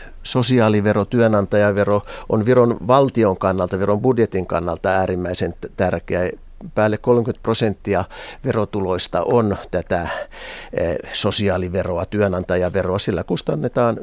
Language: Finnish